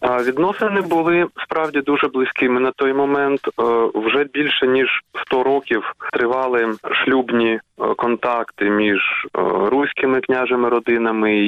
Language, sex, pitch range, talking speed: Ukrainian, male, 120-160 Hz, 100 wpm